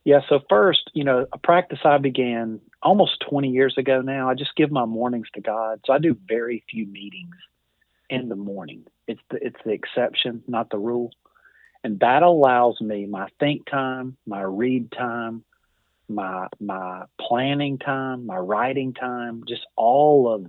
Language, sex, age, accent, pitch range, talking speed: English, male, 40-59, American, 110-135 Hz, 170 wpm